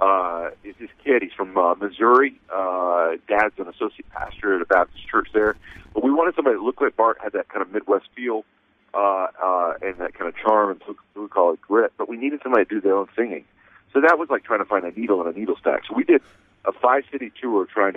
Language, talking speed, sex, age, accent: English, 245 wpm, male, 40-59, American